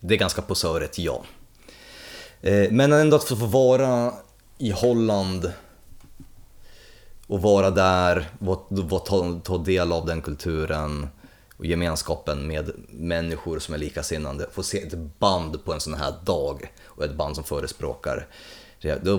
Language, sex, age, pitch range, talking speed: Swedish, male, 30-49, 80-100 Hz, 135 wpm